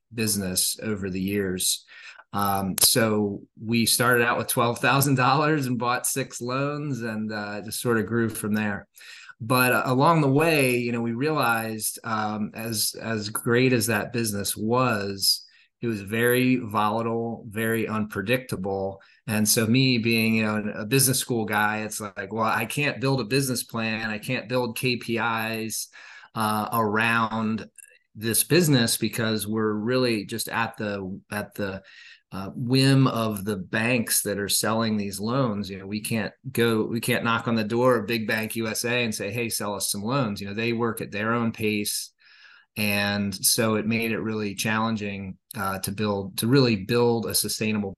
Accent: American